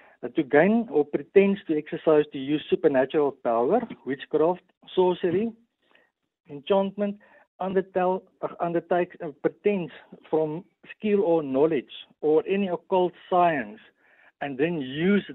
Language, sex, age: English, male, 60-79